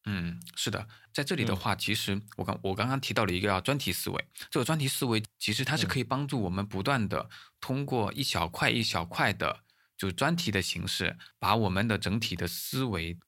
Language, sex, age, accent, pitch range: Chinese, male, 20-39, native, 95-115 Hz